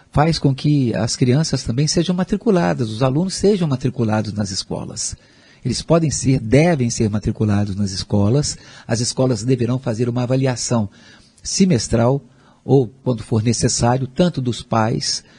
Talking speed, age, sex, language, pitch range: 140 wpm, 50-69, male, Portuguese, 120-145 Hz